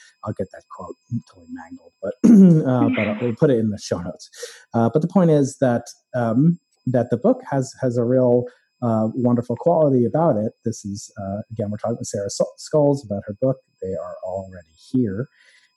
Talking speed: 205 wpm